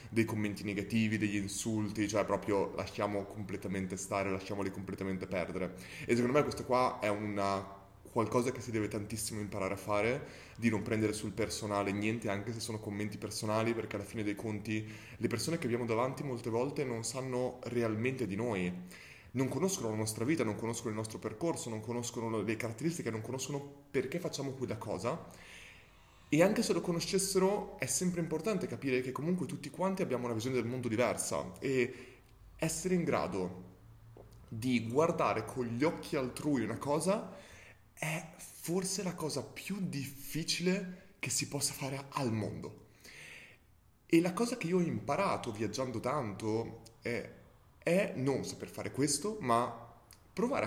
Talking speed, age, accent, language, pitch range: 160 wpm, 20-39, native, Italian, 105-145 Hz